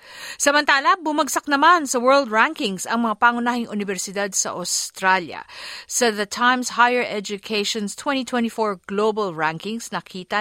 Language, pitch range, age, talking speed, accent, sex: Filipino, 190-245 Hz, 50-69, 120 wpm, native, female